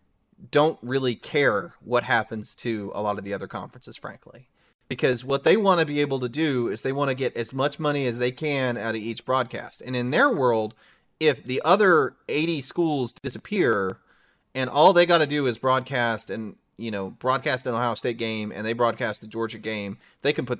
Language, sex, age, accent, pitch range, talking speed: English, male, 30-49, American, 115-145 Hz, 210 wpm